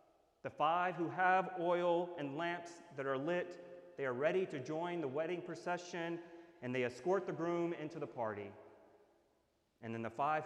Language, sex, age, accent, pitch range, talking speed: English, male, 30-49, American, 155-190 Hz, 170 wpm